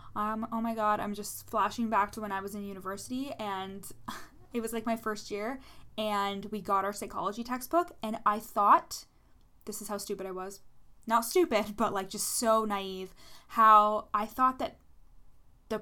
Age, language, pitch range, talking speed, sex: 10-29, English, 205-245 Hz, 180 wpm, female